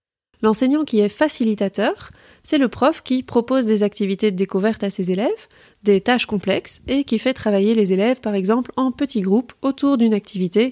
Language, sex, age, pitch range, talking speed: French, female, 20-39, 205-250 Hz, 185 wpm